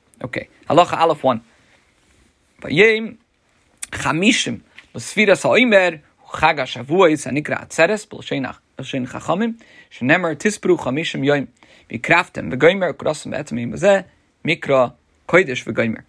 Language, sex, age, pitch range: English, male, 30-49, 135-185 Hz